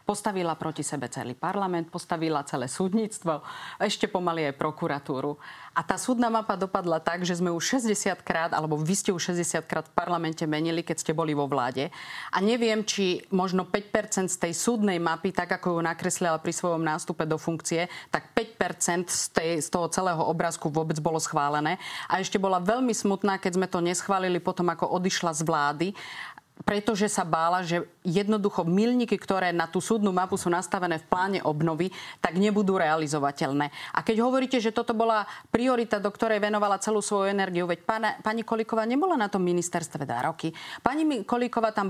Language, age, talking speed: Slovak, 40-59, 180 wpm